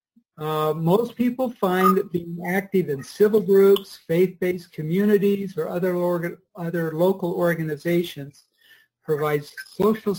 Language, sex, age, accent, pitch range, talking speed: English, male, 60-79, American, 165-210 Hz, 120 wpm